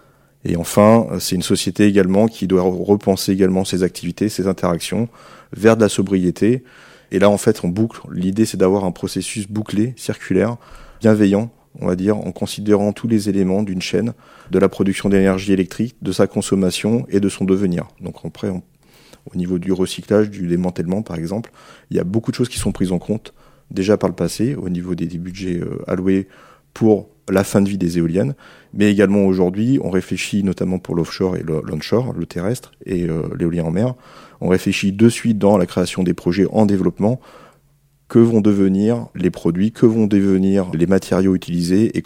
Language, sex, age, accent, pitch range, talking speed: French, male, 30-49, French, 90-105 Hz, 190 wpm